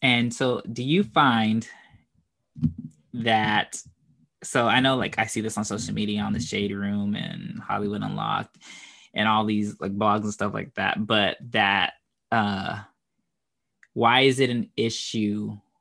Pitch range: 105-125 Hz